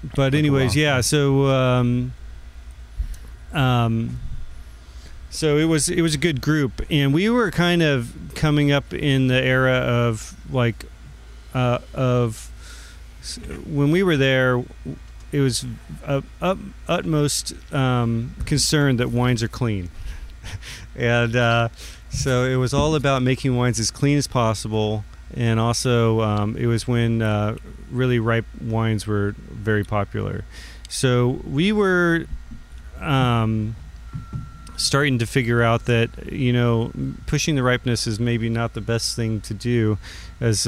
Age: 40-59